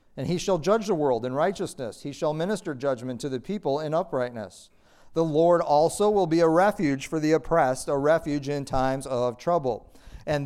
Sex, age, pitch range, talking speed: male, 50-69, 130-180 Hz, 195 wpm